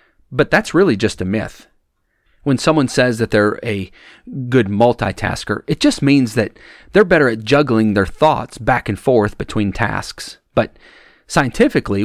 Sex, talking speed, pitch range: male, 155 wpm, 100-120 Hz